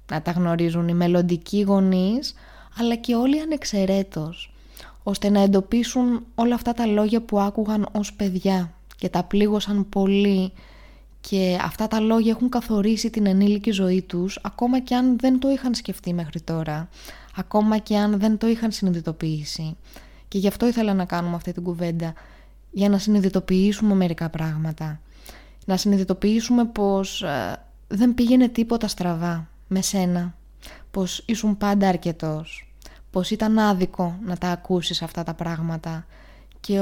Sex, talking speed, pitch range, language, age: female, 145 wpm, 175-215 Hz, Greek, 20-39